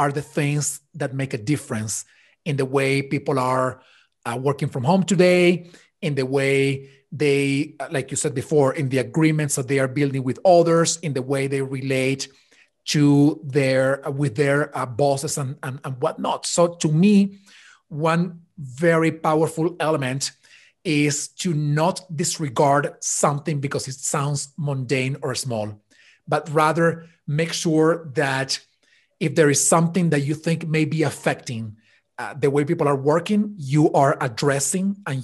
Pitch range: 140-170 Hz